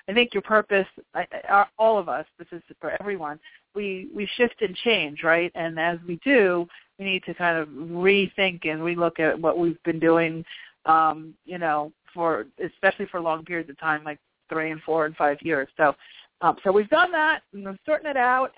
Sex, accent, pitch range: female, American, 165-200 Hz